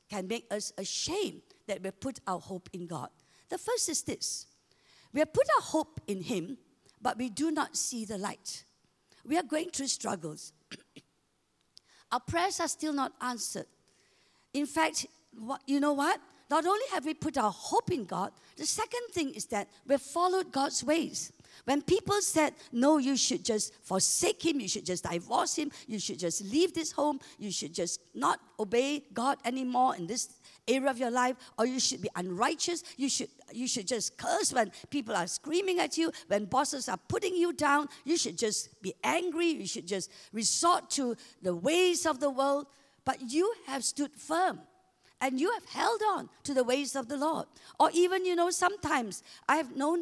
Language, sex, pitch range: English, female, 245-335 Hz